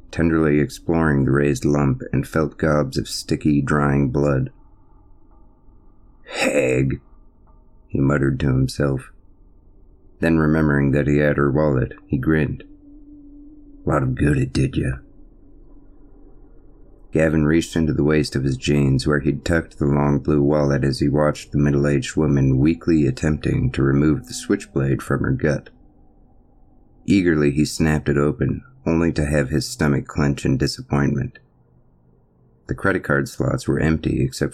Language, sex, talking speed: English, male, 140 wpm